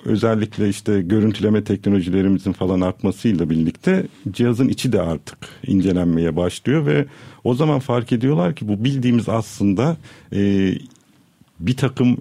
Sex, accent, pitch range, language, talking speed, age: male, native, 95-120 Hz, Turkish, 120 wpm, 50-69